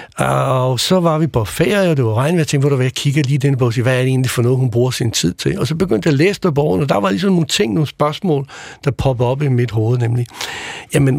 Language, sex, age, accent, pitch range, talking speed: Danish, male, 60-79, native, 125-155 Hz, 290 wpm